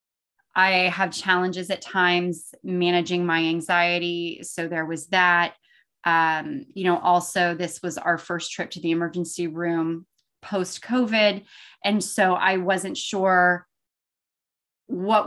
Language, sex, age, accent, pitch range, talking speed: English, female, 20-39, American, 175-235 Hz, 130 wpm